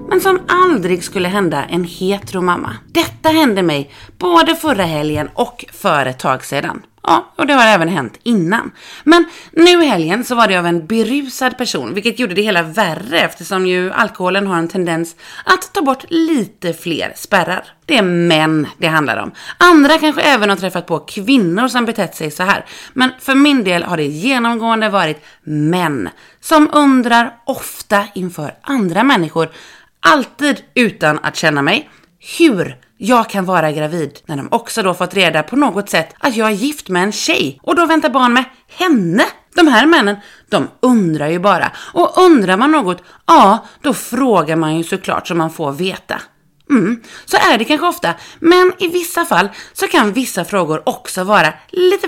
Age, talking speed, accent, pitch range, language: 30-49, 180 wpm, native, 175-285 Hz, Swedish